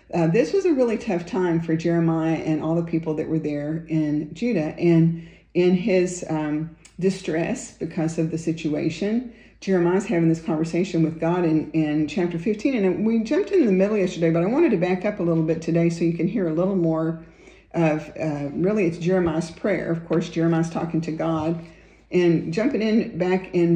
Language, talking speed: English, 195 wpm